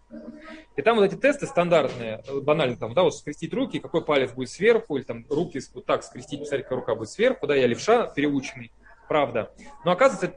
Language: Russian